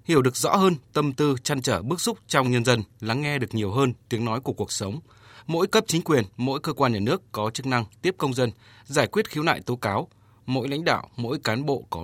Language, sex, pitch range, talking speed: Vietnamese, male, 115-150 Hz, 255 wpm